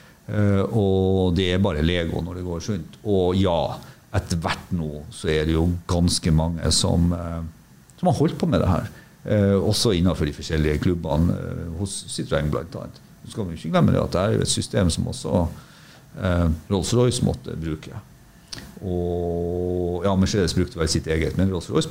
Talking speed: 195 wpm